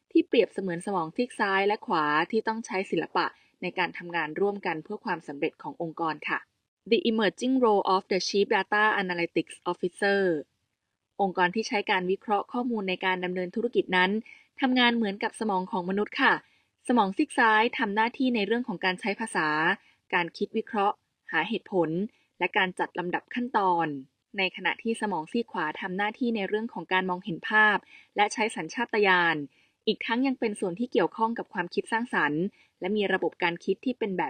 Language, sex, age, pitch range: Thai, female, 20-39, 180-225 Hz